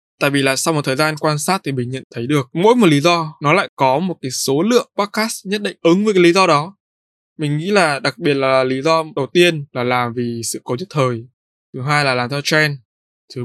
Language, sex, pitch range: Vietnamese, male, 125-165 Hz